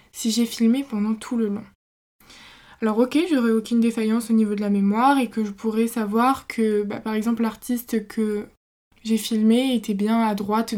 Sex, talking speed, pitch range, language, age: female, 190 wpm, 220-255 Hz, French, 20-39